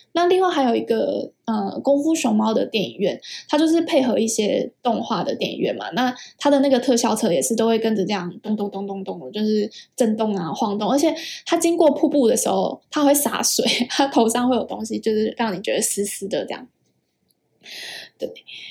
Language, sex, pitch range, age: Chinese, female, 220-275 Hz, 10-29